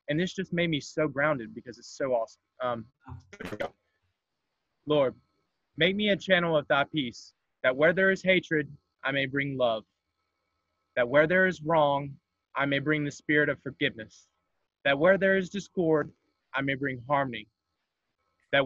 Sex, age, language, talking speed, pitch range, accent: male, 20-39, English, 165 wpm, 125-165 Hz, American